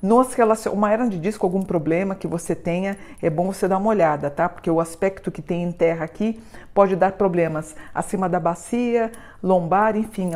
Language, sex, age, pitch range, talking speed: Portuguese, female, 50-69, 180-210 Hz, 195 wpm